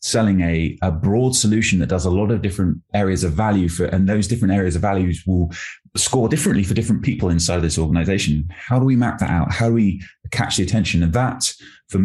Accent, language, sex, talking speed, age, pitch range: British, English, male, 230 wpm, 20-39, 90-105 Hz